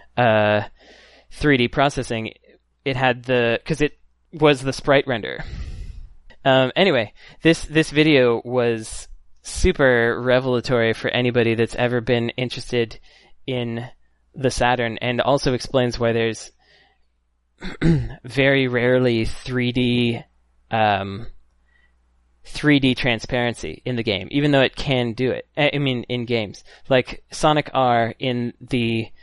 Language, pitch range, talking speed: English, 115-130 Hz, 120 wpm